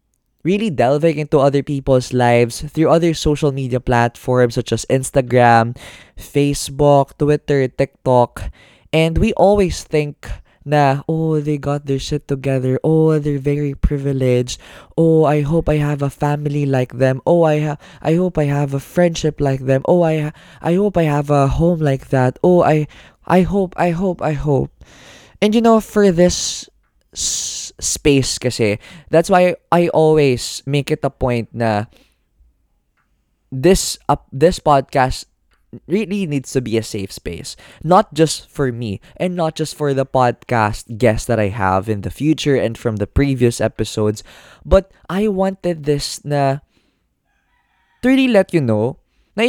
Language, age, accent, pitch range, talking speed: Filipino, 20-39, native, 125-165 Hz, 160 wpm